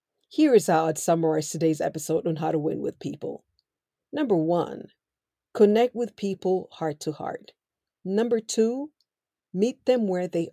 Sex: female